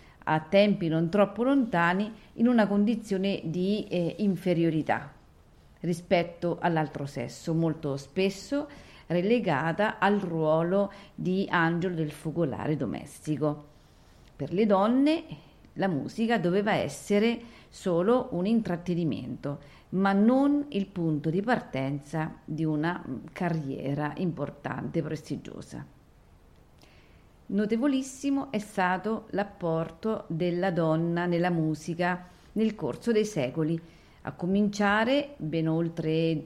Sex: female